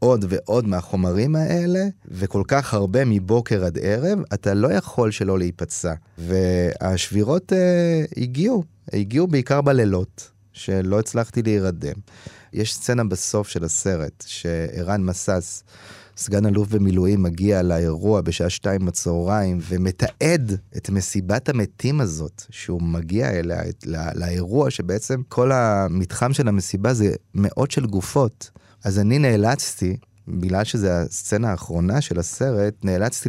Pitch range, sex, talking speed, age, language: 95-125 Hz, male, 125 wpm, 30-49, Hebrew